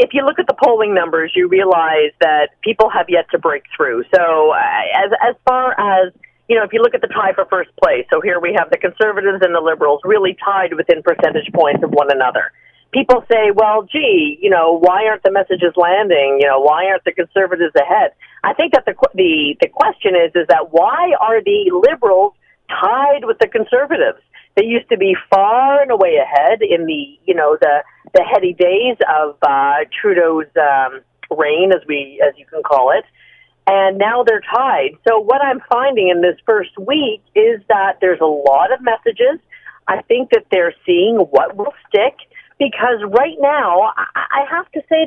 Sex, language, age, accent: female, English, 40-59, American